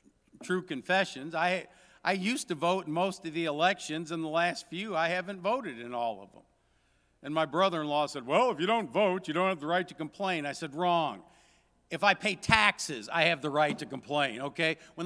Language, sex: English, male